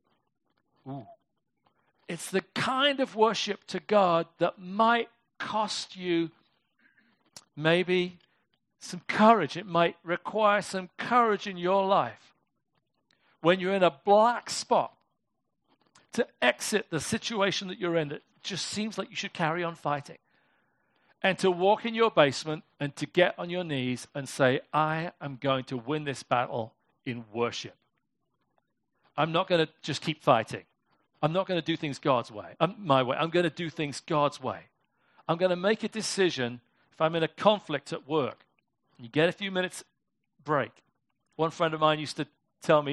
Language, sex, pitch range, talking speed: English, male, 135-185 Hz, 165 wpm